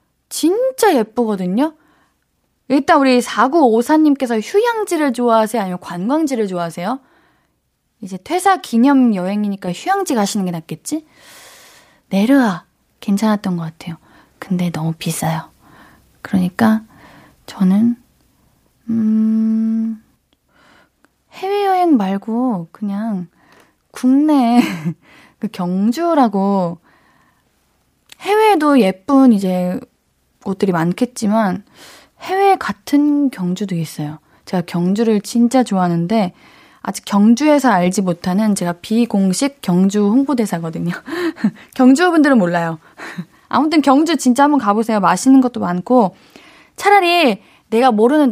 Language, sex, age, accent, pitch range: Korean, female, 20-39, native, 195-270 Hz